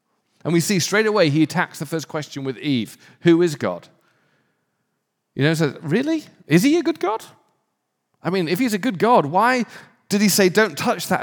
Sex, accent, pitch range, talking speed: male, British, 130-210 Hz, 205 wpm